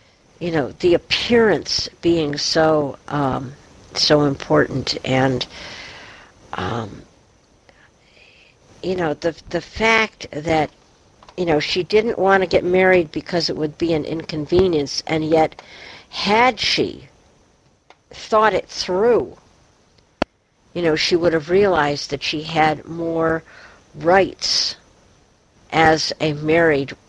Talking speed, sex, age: 115 wpm, female, 60-79